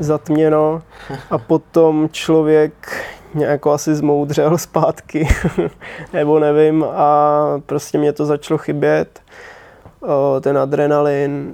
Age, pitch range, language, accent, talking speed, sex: 20-39, 145-160 Hz, Czech, native, 100 wpm, male